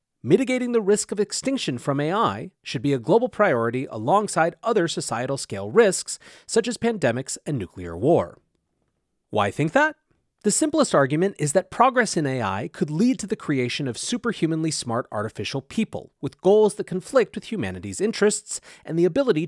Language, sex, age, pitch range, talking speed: English, male, 30-49, 120-200 Hz, 165 wpm